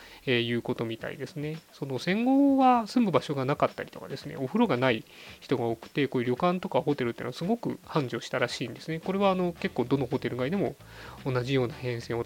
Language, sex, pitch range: Japanese, male, 120-155 Hz